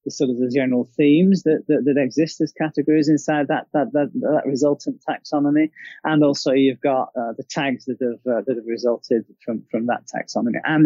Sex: male